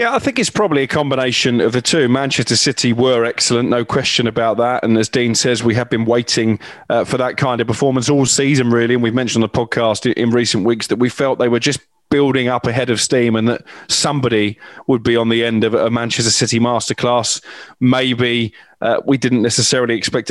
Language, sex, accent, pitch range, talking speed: English, male, British, 115-135 Hz, 220 wpm